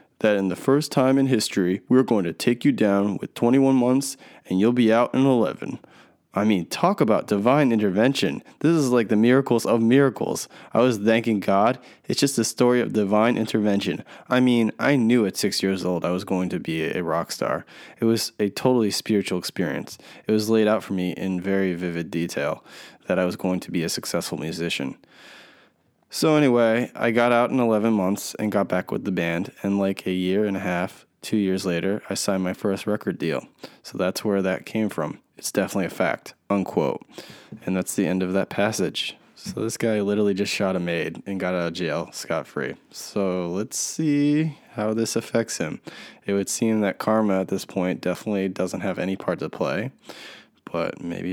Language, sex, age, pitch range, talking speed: English, male, 20-39, 95-120 Hz, 200 wpm